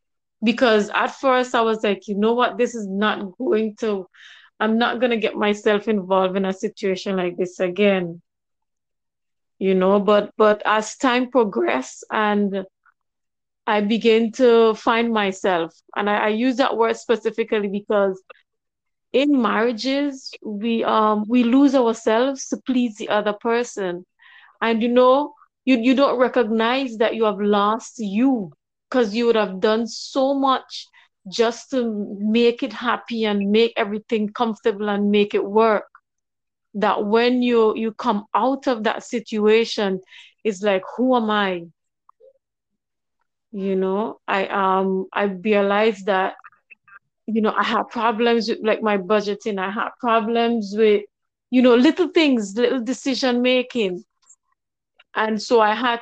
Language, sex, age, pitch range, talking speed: English, female, 30-49, 205-245 Hz, 145 wpm